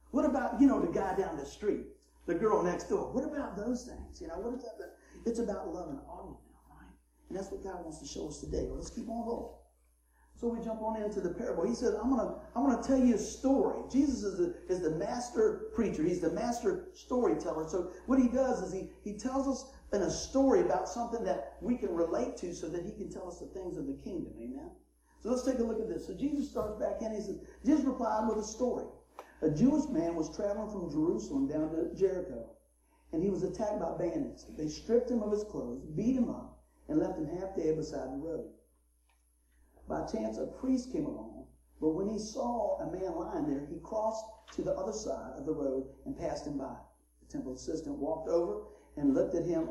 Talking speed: 230 wpm